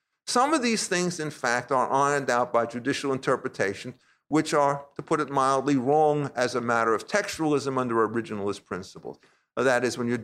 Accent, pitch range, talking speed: American, 125-165 Hz, 180 wpm